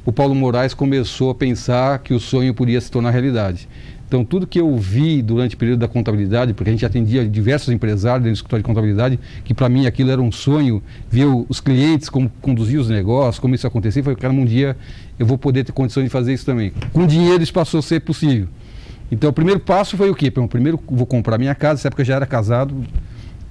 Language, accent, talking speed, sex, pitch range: Portuguese, Brazilian, 225 wpm, male, 115-135 Hz